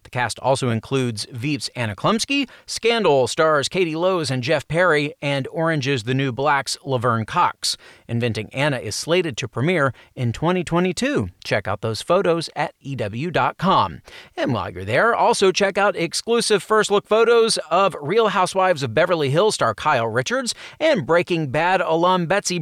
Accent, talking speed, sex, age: American, 160 wpm, male, 30-49